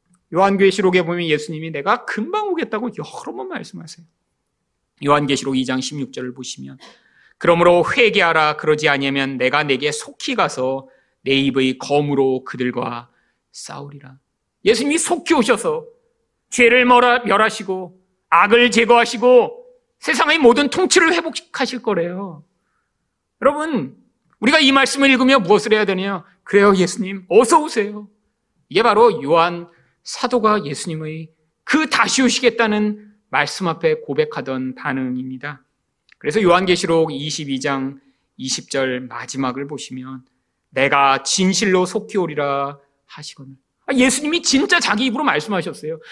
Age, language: 40-59, Korean